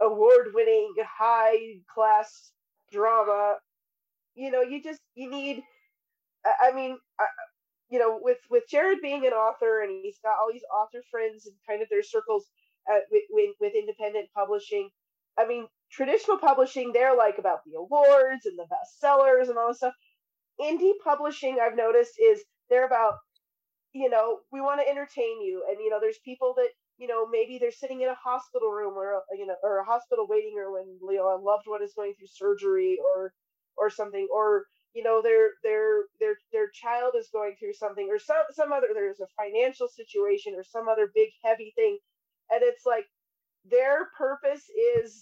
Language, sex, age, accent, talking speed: English, female, 30-49, American, 180 wpm